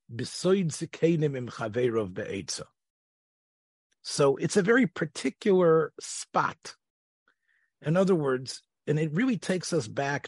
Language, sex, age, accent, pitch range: English, male, 40-59, American, 120-165 Hz